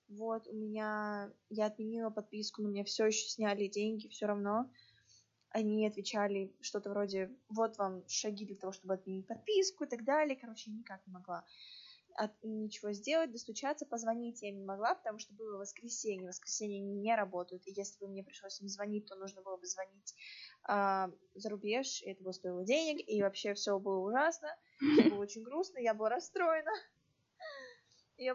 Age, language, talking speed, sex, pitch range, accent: 20-39, Russian, 175 wpm, female, 200-265 Hz, native